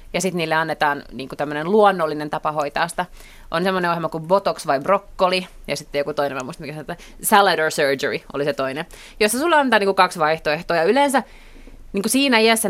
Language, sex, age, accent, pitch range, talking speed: Finnish, female, 30-49, native, 165-220 Hz, 190 wpm